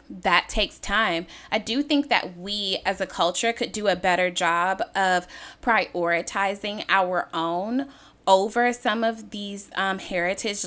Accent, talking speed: American, 145 wpm